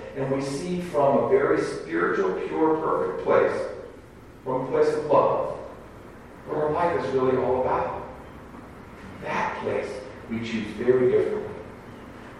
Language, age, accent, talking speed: English, 40-59, American, 140 wpm